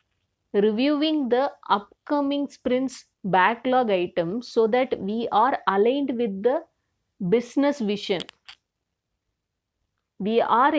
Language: English